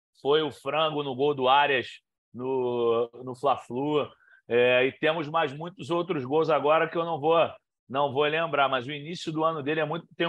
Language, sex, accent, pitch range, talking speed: Portuguese, male, Brazilian, 145-195 Hz, 200 wpm